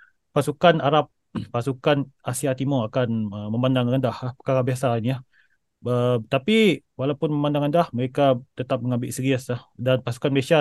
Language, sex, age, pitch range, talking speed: Malay, male, 20-39, 125-150 Hz, 135 wpm